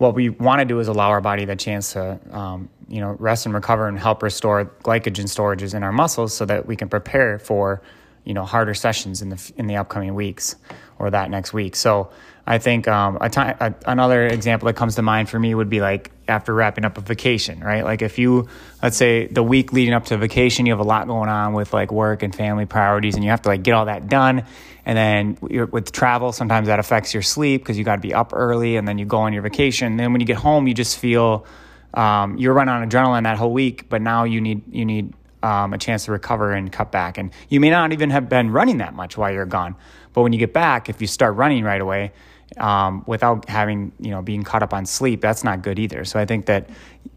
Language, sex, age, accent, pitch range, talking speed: English, male, 20-39, American, 100-120 Hz, 255 wpm